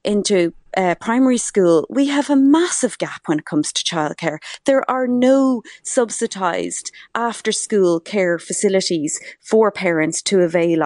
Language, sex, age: English, female, 30-49